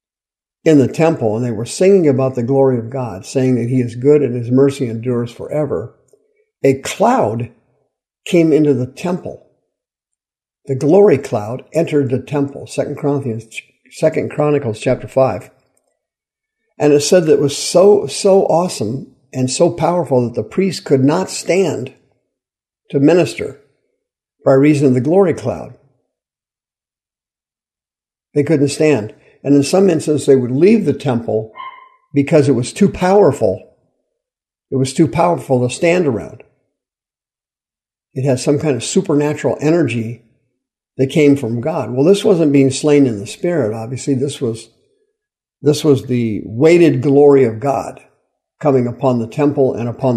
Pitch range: 125-160 Hz